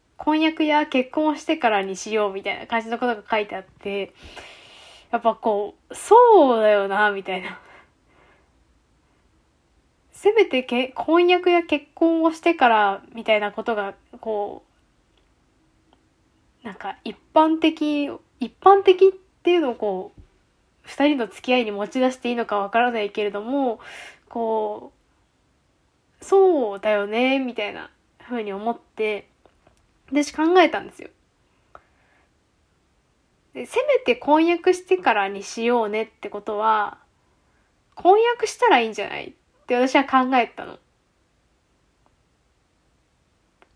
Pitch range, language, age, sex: 210-345 Hz, Japanese, 10-29, female